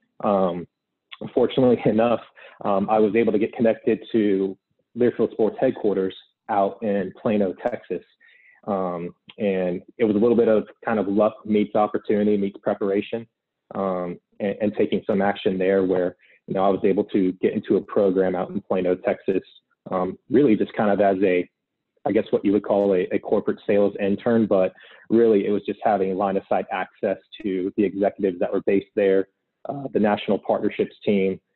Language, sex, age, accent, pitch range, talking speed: English, male, 30-49, American, 95-105 Hz, 180 wpm